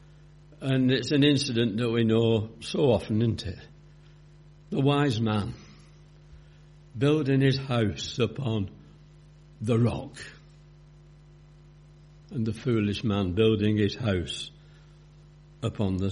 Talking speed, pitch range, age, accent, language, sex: 110 wpm, 115-150 Hz, 60-79, British, English, male